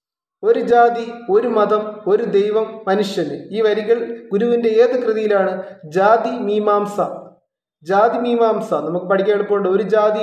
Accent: native